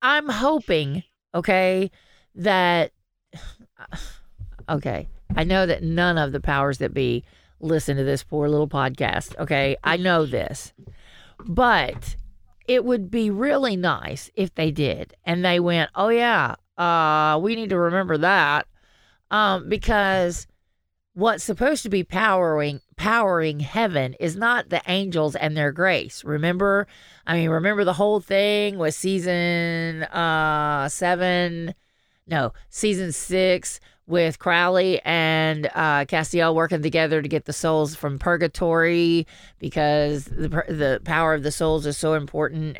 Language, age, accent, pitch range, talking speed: English, 40-59, American, 150-185 Hz, 135 wpm